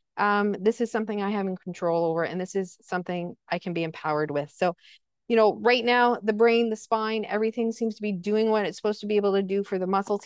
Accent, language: American, English